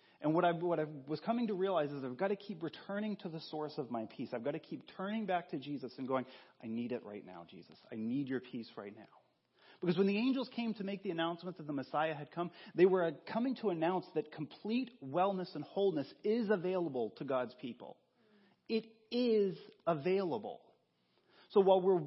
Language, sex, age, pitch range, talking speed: English, male, 30-49, 145-200 Hz, 210 wpm